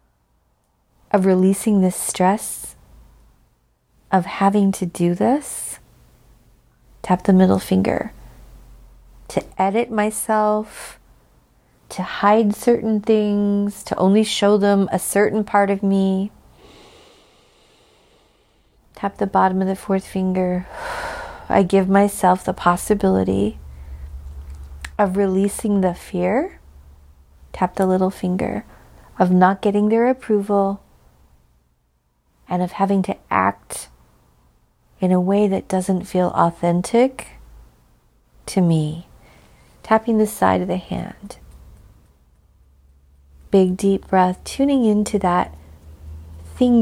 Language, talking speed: English, 105 wpm